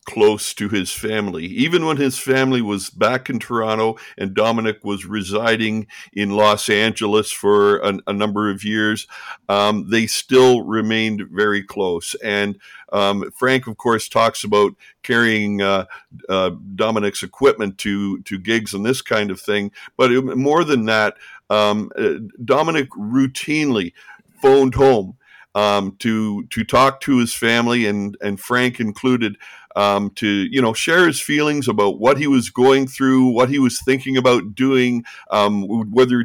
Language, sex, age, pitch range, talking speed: English, male, 50-69, 105-130 Hz, 150 wpm